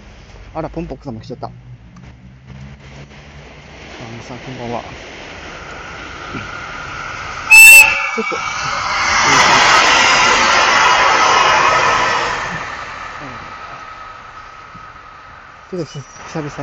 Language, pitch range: Japanese, 90-145 Hz